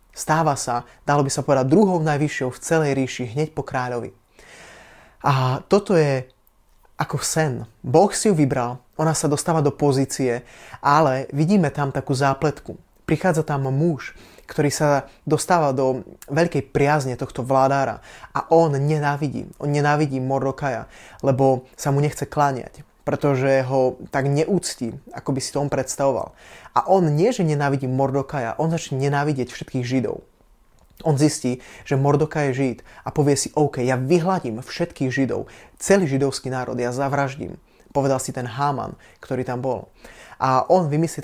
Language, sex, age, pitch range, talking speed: Slovak, male, 20-39, 130-150 Hz, 155 wpm